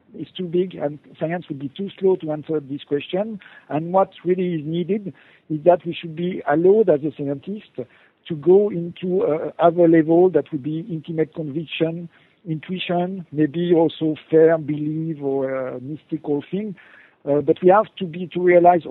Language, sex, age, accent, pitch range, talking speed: English, male, 50-69, French, 150-180 Hz, 175 wpm